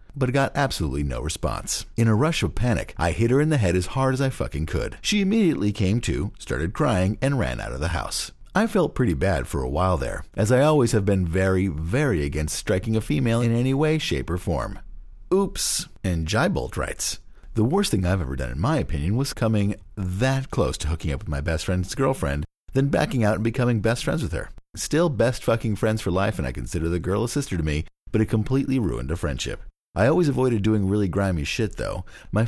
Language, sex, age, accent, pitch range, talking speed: English, male, 50-69, American, 85-125 Hz, 225 wpm